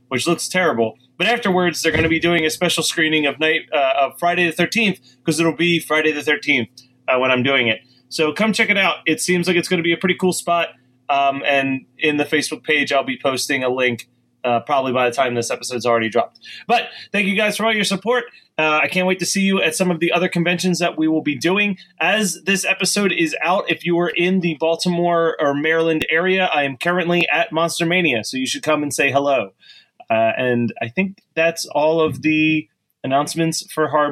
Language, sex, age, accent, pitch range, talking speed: English, male, 30-49, American, 145-185 Hz, 230 wpm